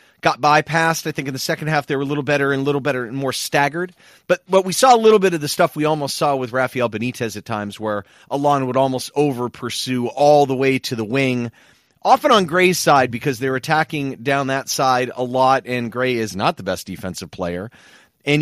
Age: 30-49